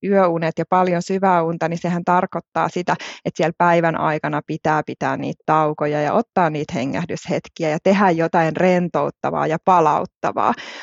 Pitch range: 155-185 Hz